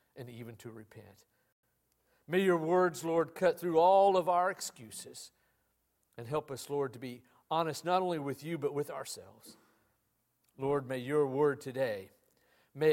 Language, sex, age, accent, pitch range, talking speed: English, male, 50-69, American, 135-170 Hz, 160 wpm